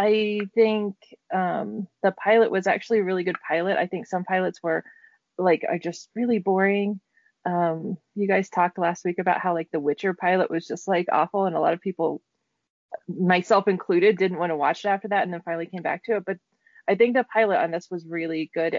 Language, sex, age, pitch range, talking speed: English, female, 20-39, 170-215 Hz, 215 wpm